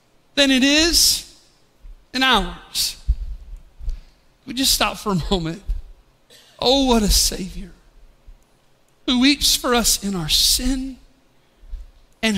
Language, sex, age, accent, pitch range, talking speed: English, male, 50-69, American, 185-280 Hz, 110 wpm